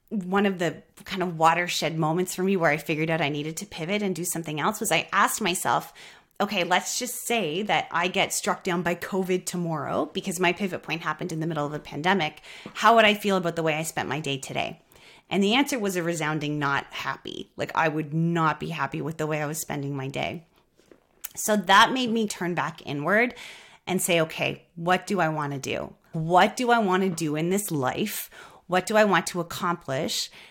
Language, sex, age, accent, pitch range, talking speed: English, female, 30-49, American, 160-205 Hz, 220 wpm